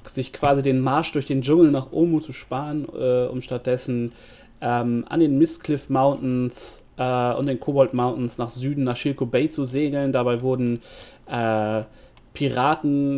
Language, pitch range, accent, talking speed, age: German, 120-140 Hz, German, 155 wpm, 30-49